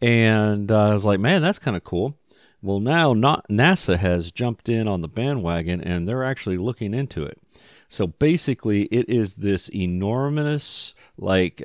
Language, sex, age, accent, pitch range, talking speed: English, male, 40-59, American, 90-125 Hz, 170 wpm